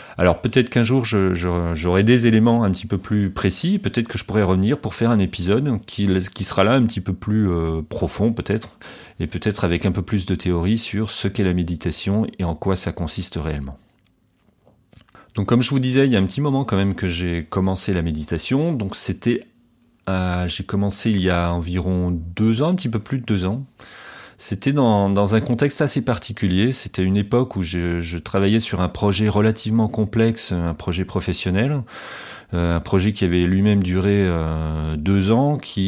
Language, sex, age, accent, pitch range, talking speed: French, male, 30-49, French, 90-110 Hz, 200 wpm